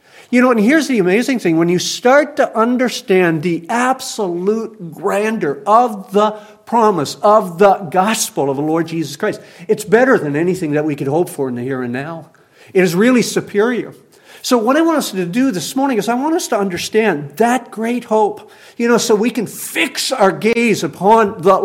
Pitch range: 145-210 Hz